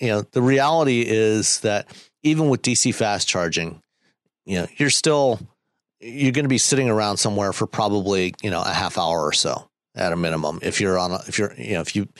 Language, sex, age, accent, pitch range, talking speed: English, male, 50-69, American, 95-120 Hz, 210 wpm